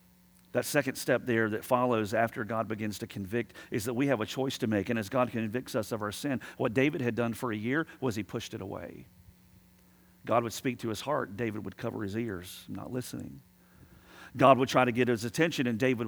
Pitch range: 125-175 Hz